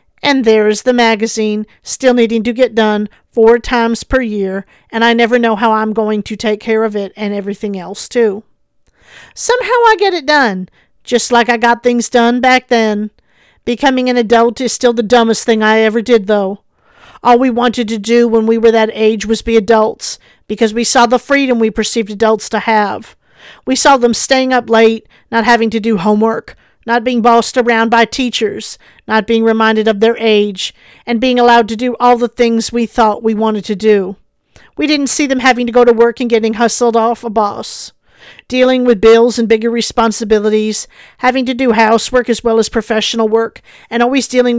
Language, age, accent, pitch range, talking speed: English, 50-69, American, 220-245 Hz, 200 wpm